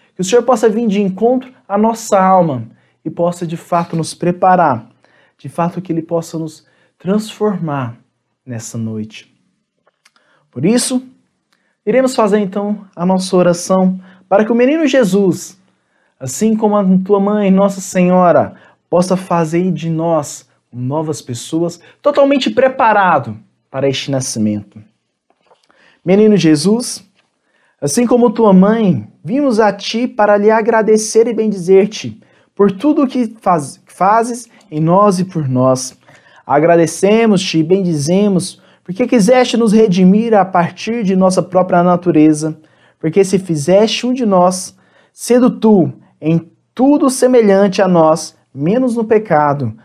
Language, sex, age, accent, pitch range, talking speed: Portuguese, male, 20-39, Brazilian, 160-215 Hz, 130 wpm